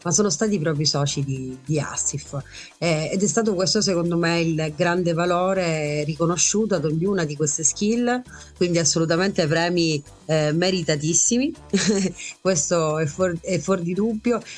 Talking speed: 140 wpm